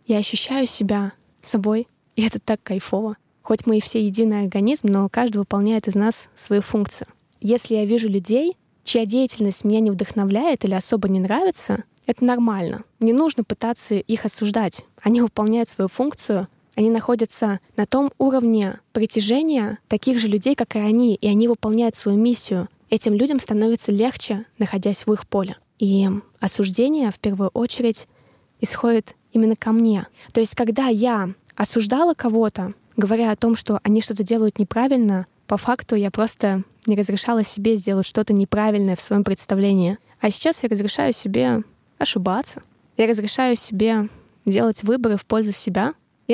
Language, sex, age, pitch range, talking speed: Russian, female, 20-39, 205-235 Hz, 155 wpm